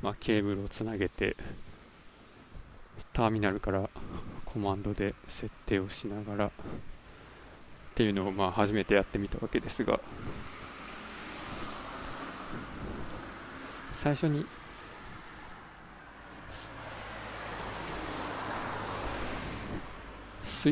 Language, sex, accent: Japanese, male, native